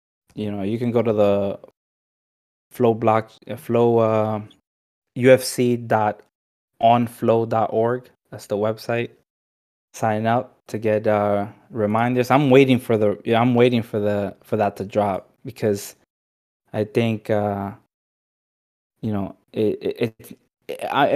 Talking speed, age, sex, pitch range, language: 115 wpm, 20-39, male, 105-120 Hz, English